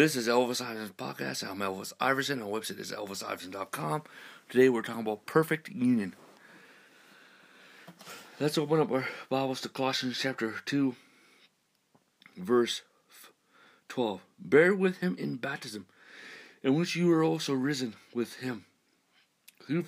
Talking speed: 130 wpm